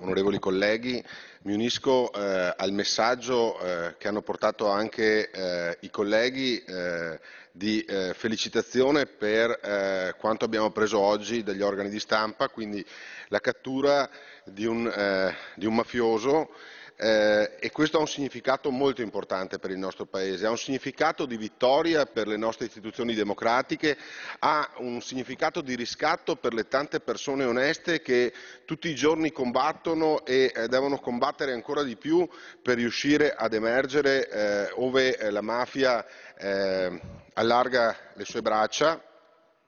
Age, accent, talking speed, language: 40-59, native, 145 wpm, Italian